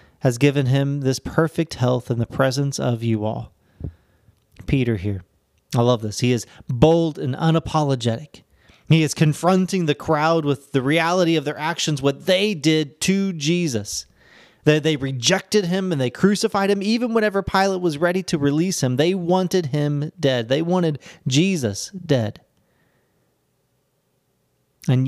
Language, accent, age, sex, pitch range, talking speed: English, American, 30-49, male, 125-170 Hz, 150 wpm